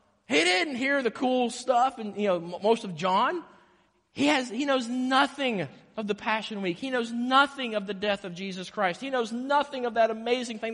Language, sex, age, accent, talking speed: English, male, 30-49, American, 205 wpm